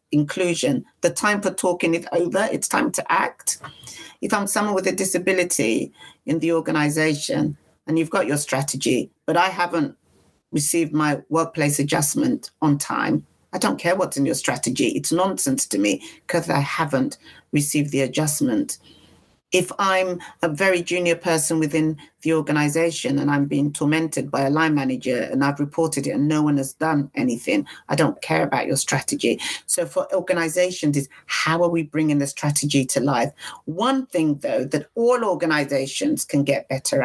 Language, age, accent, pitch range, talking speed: English, 40-59, British, 145-190 Hz, 170 wpm